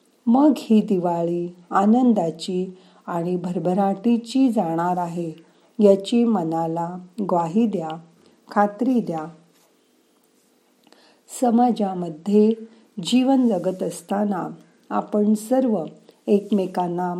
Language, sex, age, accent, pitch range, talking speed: Marathi, female, 40-59, native, 170-225 Hz, 75 wpm